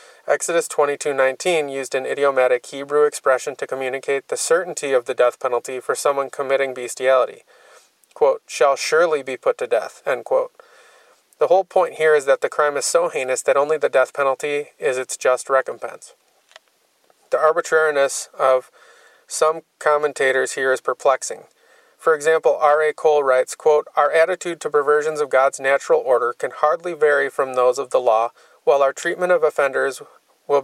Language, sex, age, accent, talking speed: English, male, 30-49, American, 165 wpm